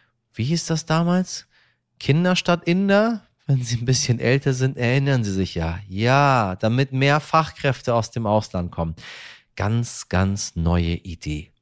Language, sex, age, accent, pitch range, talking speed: German, male, 30-49, German, 115-155 Hz, 145 wpm